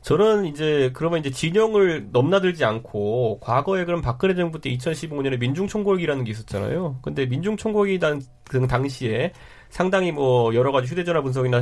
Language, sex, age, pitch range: Korean, male, 30-49, 125-185 Hz